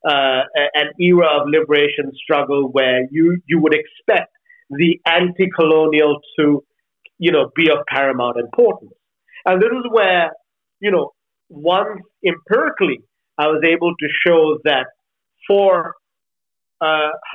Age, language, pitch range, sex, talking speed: 50-69, English, 145-190 Hz, male, 125 wpm